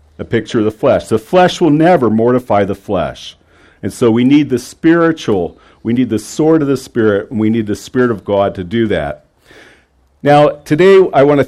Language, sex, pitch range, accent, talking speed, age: English, male, 110-150 Hz, American, 210 wpm, 50-69